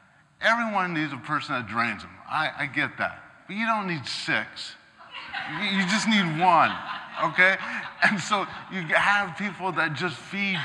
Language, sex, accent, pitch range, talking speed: English, male, American, 115-160 Hz, 170 wpm